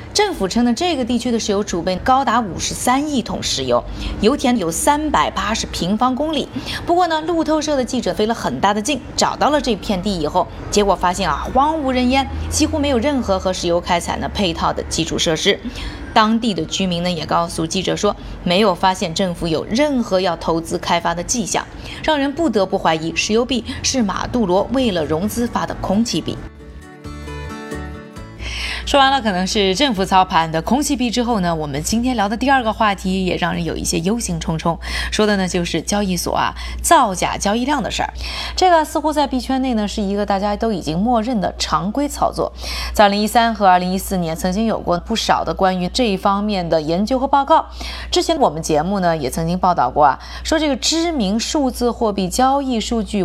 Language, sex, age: Chinese, female, 20-39